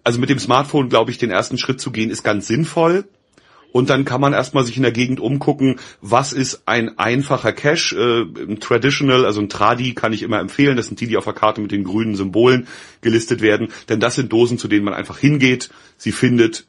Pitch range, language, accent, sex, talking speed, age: 110-140 Hz, German, German, male, 225 wpm, 40-59